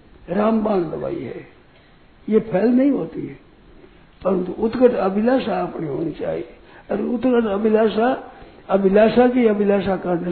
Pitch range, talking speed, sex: 180-230 Hz, 120 wpm, male